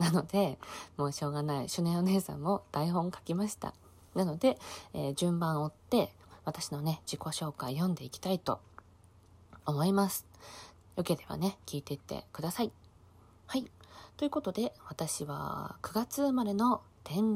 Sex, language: female, Japanese